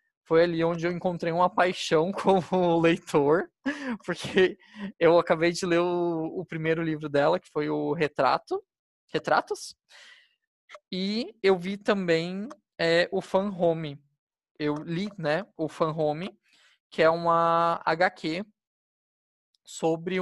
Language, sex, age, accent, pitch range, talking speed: Portuguese, male, 20-39, Brazilian, 155-190 Hz, 125 wpm